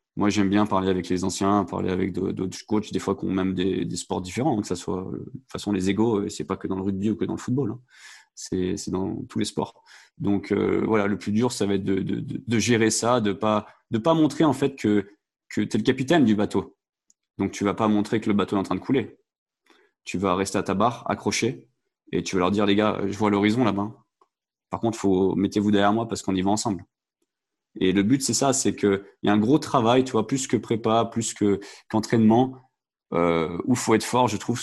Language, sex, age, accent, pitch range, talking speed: French, male, 20-39, French, 95-110 Hz, 255 wpm